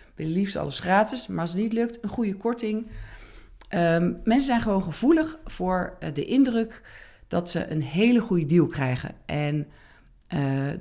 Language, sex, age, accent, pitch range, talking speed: Dutch, female, 50-69, Dutch, 160-225 Hz, 160 wpm